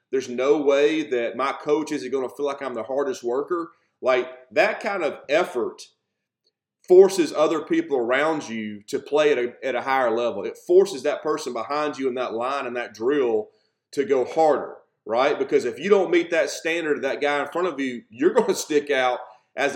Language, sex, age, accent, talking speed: English, male, 30-49, American, 205 wpm